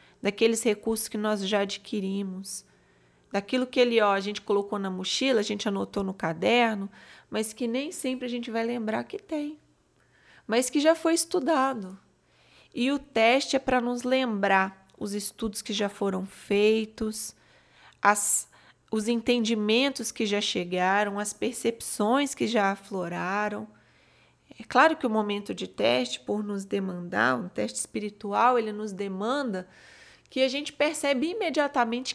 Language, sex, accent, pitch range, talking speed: Portuguese, female, Brazilian, 200-245 Hz, 145 wpm